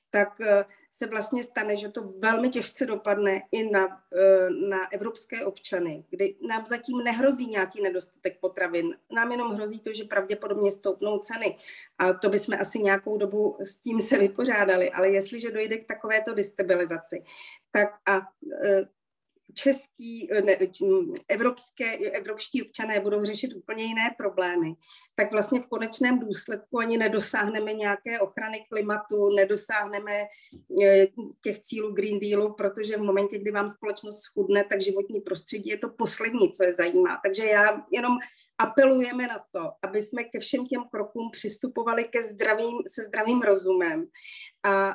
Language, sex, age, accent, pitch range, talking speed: Czech, female, 30-49, native, 195-225 Hz, 140 wpm